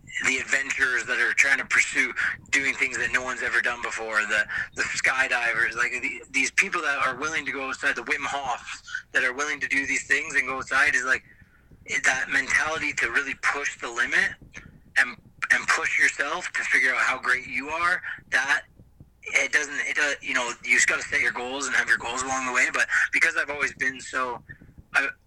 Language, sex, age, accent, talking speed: English, male, 20-39, American, 210 wpm